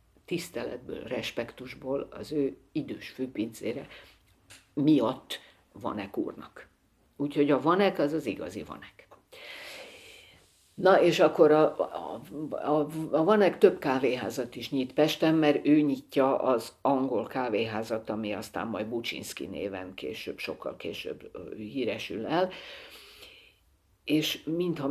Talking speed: 115 wpm